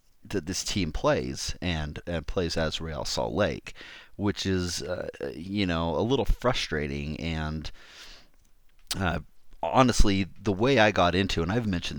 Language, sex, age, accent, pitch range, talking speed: English, male, 30-49, American, 80-95 Hz, 150 wpm